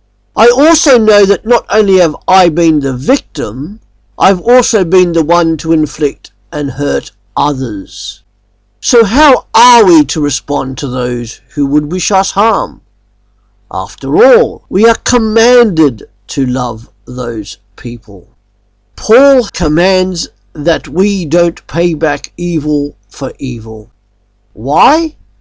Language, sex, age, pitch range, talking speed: English, male, 50-69, 135-215 Hz, 130 wpm